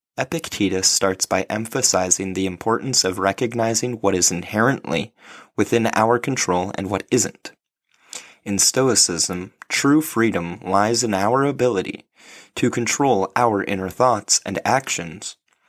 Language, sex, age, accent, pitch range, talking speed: English, male, 20-39, American, 95-125 Hz, 120 wpm